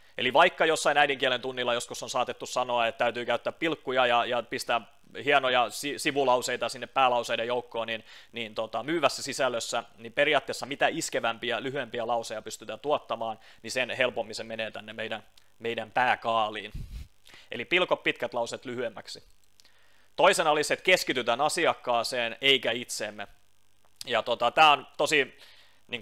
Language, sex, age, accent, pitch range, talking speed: Finnish, male, 30-49, native, 115-135 Hz, 145 wpm